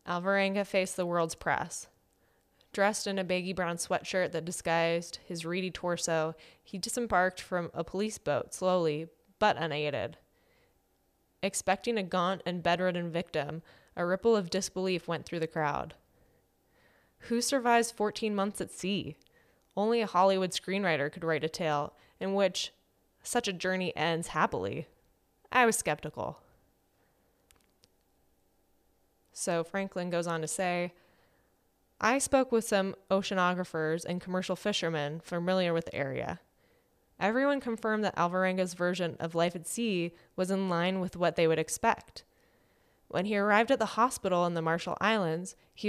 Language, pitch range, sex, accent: English, 160-195 Hz, female, American